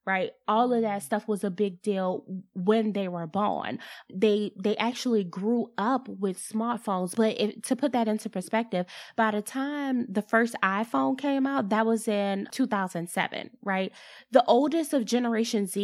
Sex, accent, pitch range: female, American, 190-235 Hz